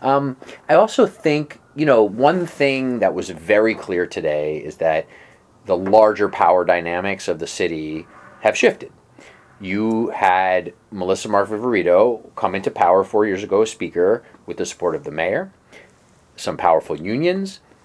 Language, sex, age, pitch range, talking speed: English, male, 30-49, 90-120 Hz, 150 wpm